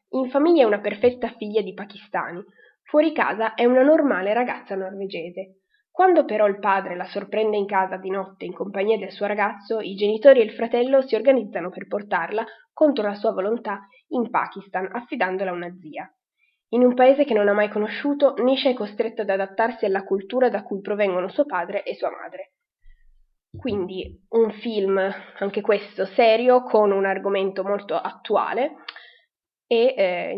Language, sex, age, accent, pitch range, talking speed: Italian, female, 20-39, native, 195-250 Hz, 170 wpm